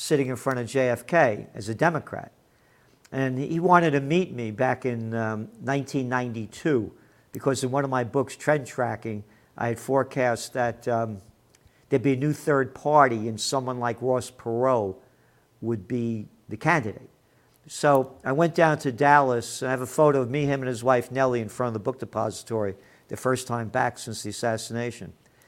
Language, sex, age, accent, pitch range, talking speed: English, male, 50-69, American, 125-160 Hz, 180 wpm